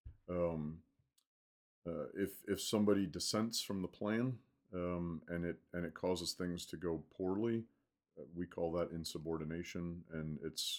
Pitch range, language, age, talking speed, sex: 80-90 Hz, English, 40-59, 145 wpm, male